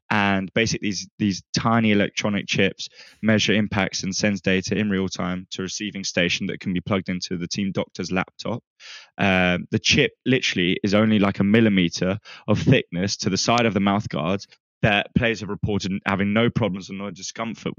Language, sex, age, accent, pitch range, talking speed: English, male, 10-29, British, 95-115 Hz, 190 wpm